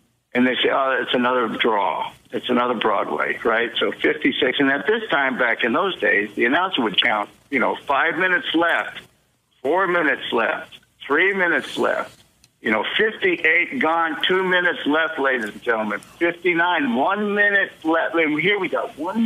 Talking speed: 170 wpm